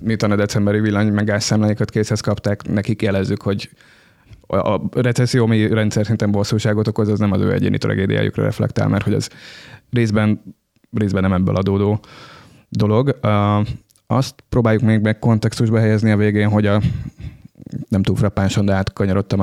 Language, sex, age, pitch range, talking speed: Hungarian, male, 20-39, 100-115 Hz, 140 wpm